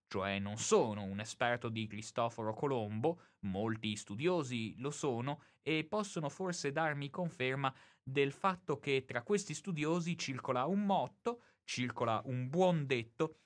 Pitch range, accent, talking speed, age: 115-150 Hz, native, 135 wpm, 20-39